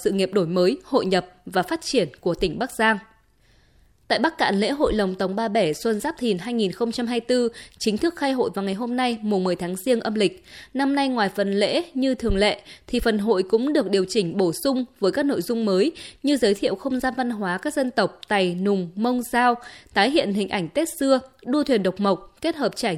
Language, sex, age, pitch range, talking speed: Vietnamese, female, 20-39, 200-260 Hz, 230 wpm